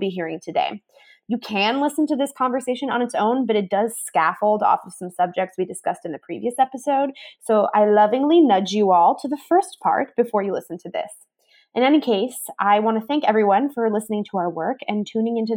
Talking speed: 220 wpm